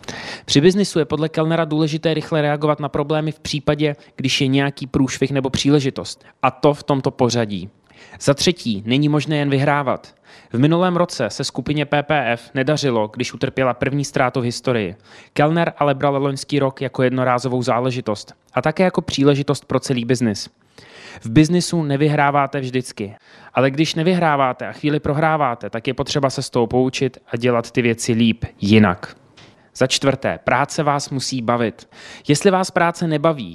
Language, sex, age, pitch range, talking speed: Czech, male, 20-39, 130-155 Hz, 160 wpm